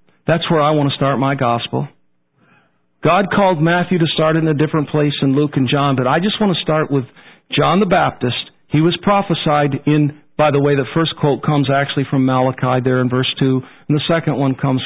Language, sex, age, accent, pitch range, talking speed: English, male, 50-69, American, 125-155 Hz, 220 wpm